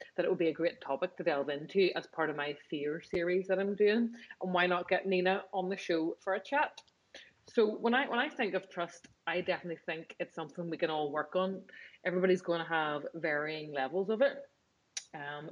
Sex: female